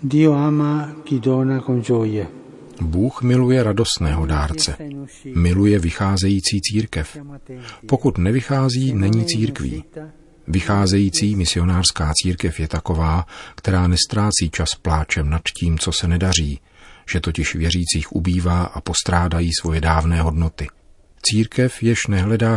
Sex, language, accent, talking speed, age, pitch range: male, Czech, native, 100 wpm, 40-59, 80-105 Hz